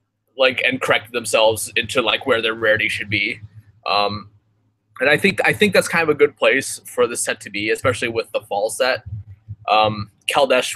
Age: 20-39